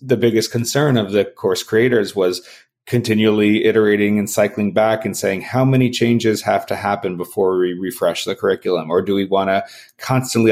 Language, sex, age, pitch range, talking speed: English, male, 30-49, 105-130 Hz, 185 wpm